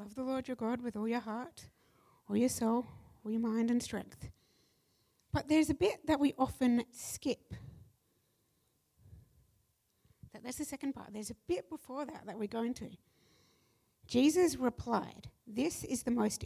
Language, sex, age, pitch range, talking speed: English, female, 60-79, 210-255 Hz, 165 wpm